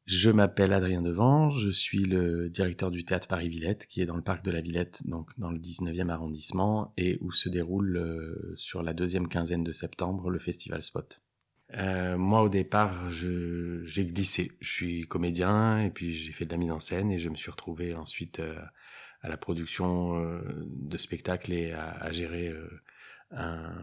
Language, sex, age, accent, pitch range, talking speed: French, male, 30-49, French, 90-105 Hz, 190 wpm